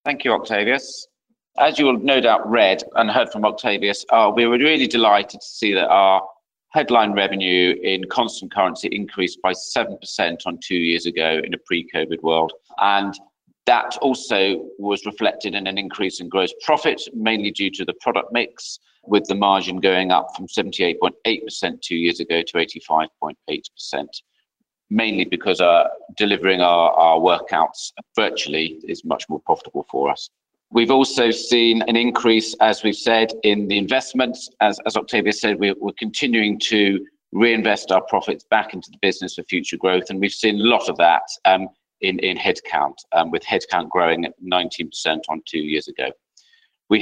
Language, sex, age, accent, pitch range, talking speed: English, male, 40-59, British, 90-115 Hz, 170 wpm